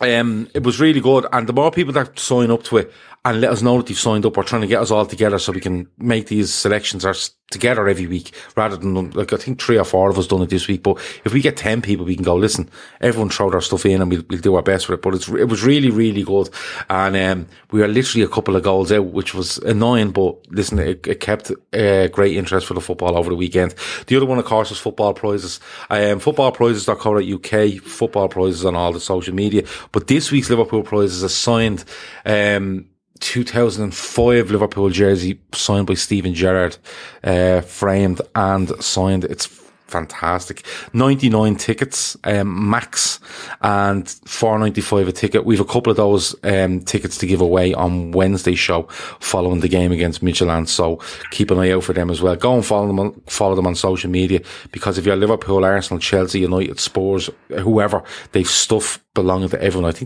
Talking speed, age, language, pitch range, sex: 205 wpm, 30-49, English, 95-110 Hz, male